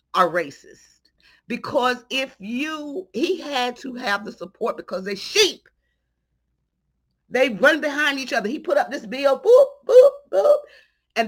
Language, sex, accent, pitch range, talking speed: English, female, American, 195-270 Hz, 150 wpm